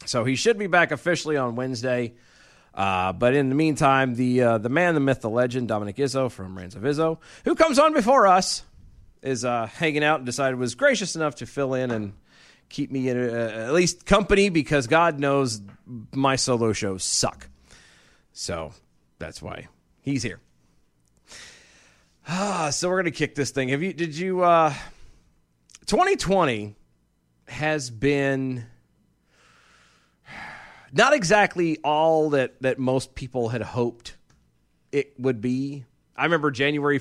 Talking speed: 155 wpm